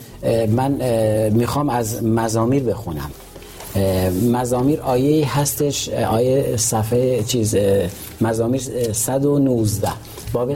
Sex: male